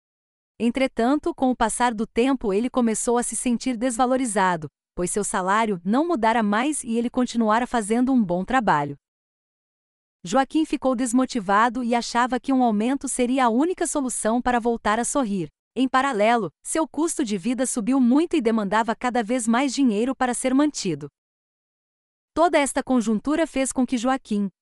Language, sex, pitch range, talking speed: Portuguese, female, 220-270 Hz, 160 wpm